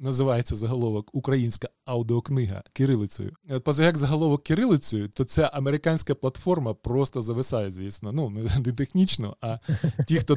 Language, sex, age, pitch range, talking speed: Ukrainian, male, 20-39, 120-150 Hz, 125 wpm